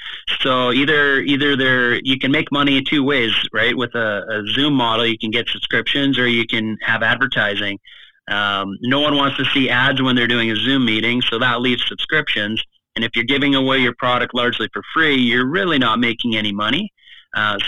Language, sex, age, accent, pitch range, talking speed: English, male, 30-49, American, 110-135 Hz, 205 wpm